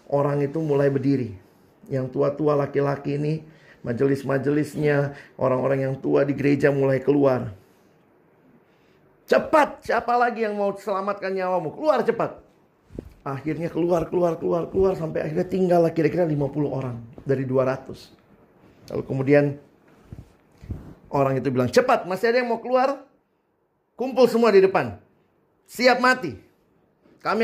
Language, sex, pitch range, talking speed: Indonesian, male, 135-180 Hz, 120 wpm